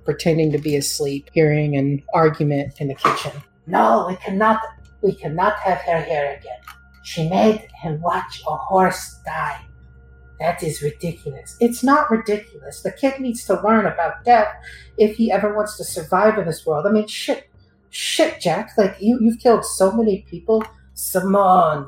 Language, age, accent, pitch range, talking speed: English, 40-59, American, 150-225 Hz, 165 wpm